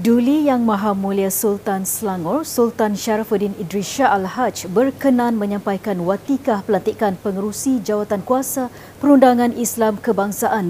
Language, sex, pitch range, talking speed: Malay, female, 205-250 Hz, 120 wpm